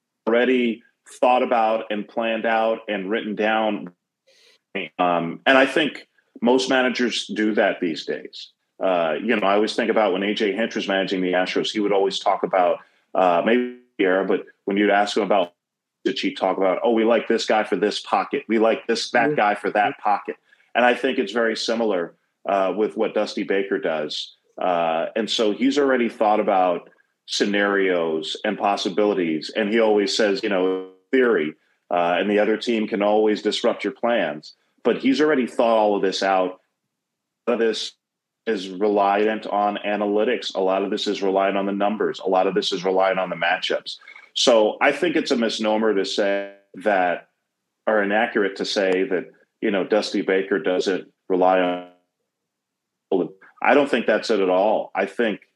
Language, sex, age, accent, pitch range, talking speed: English, male, 40-59, American, 95-115 Hz, 185 wpm